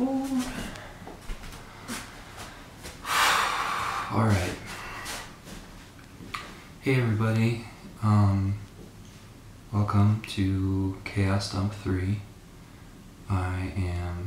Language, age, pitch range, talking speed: English, 20-39, 95-100 Hz, 50 wpm